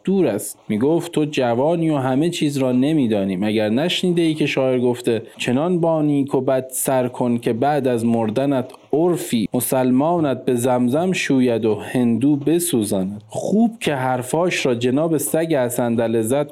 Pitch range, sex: 125-170 Hz, male